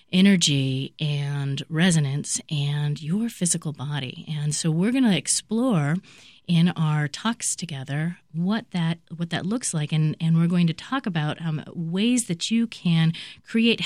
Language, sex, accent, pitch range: English, female, American, 145-175 Hz